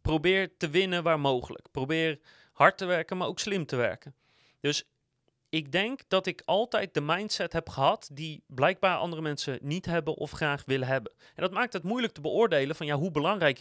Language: Dutch